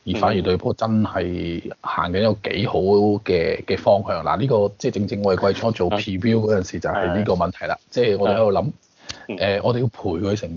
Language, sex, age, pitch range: Chinese, male, 20-39, 95-130 Hz